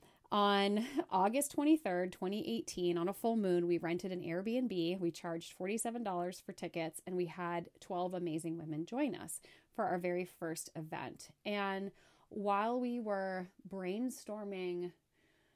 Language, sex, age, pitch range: English, female, 30-49, 170-210 Hz